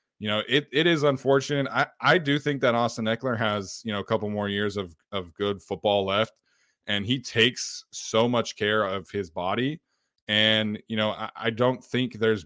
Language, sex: English, male